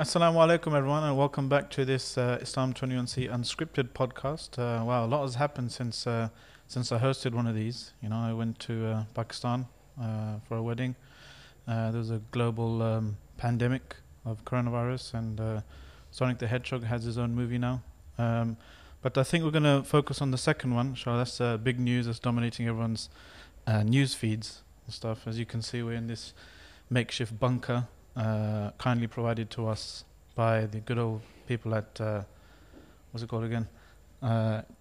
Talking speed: 190 wpm